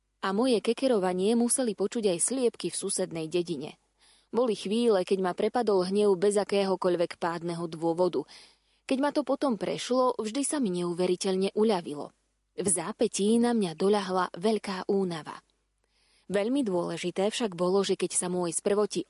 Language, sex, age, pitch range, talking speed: Slovak, female, 20-39, 180-240 Hz, 145 wpm